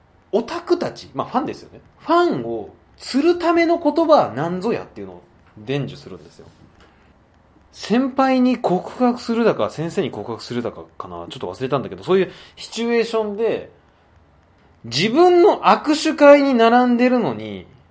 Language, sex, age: Japanese, male, 20-39